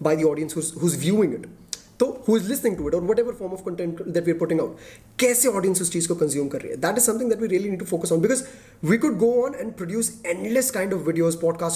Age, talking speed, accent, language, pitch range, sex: 20-39, 275 wpm, native, Hindi, 160-210 Hz, male